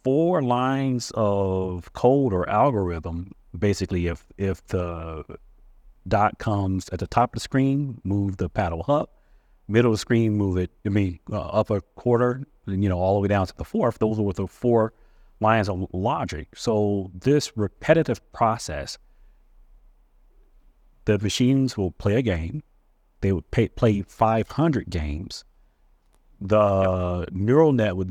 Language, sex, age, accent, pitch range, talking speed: English, male, 40-59, American, 95-115 Hz, 145 wpm